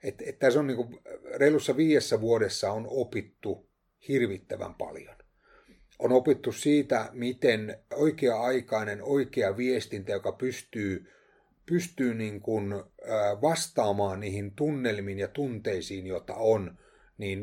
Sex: male